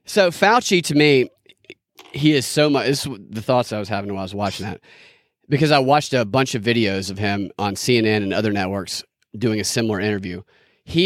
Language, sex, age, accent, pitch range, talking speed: English, male, 30-49, American, 115-150 Hz, 210 wpm